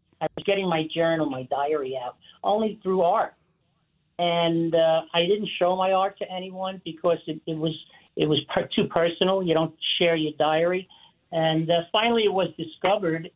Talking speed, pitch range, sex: 180 wpm, 155-180 Hz, male